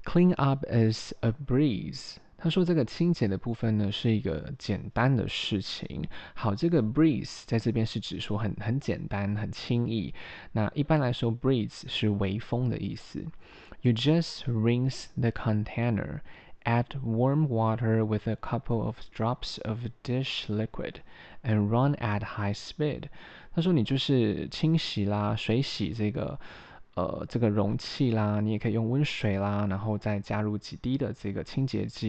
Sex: male